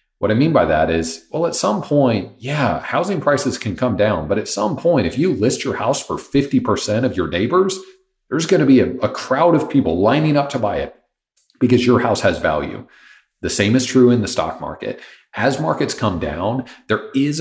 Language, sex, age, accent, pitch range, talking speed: English, male, 40-59, American, 95-130 Hz, 215 wpm